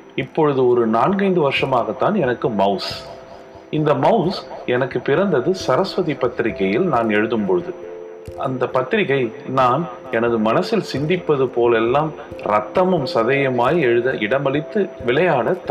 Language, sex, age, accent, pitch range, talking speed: Tamil, male, 30-49, native, 105-165 Hz, 105 wpm